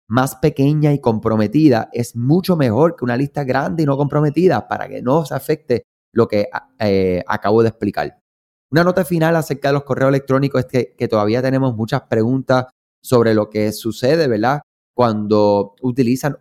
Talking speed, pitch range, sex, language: 170 wpm, 105-140 Hz, male, Spanish